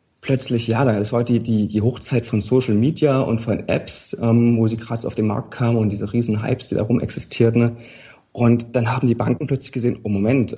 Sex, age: male, 30-49